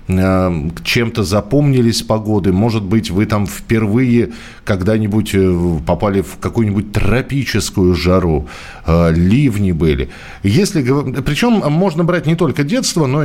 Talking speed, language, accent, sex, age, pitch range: 105 wpm, Russian, native, male, 40-59, 95-135 Hz